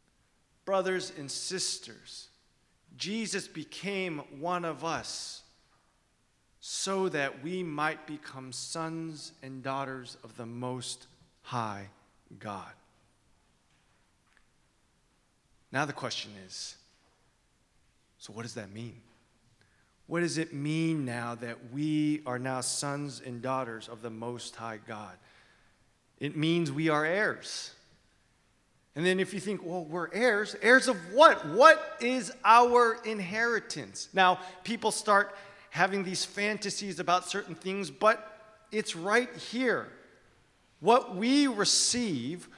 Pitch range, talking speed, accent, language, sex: 125-195 Hz, 115 wpm, American, English, male